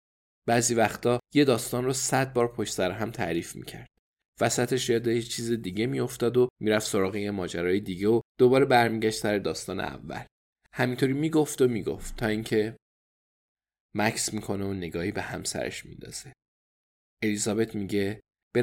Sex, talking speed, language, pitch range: male, 150 wpm, Persian, 95-130 Hz